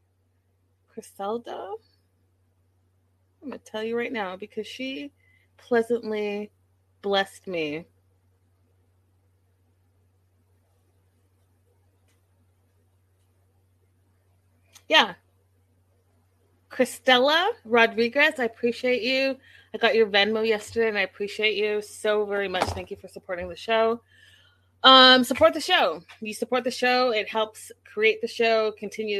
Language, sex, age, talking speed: English, female, 20-39, 105 wpm